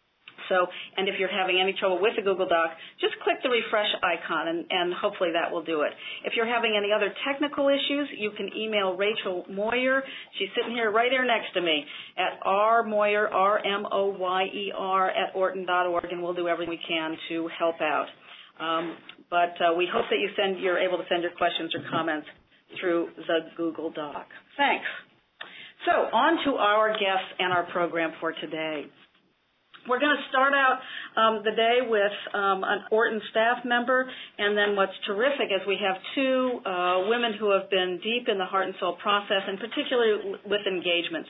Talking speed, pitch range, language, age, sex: 185 wpm, 175-235 Hz, English, 40-59, female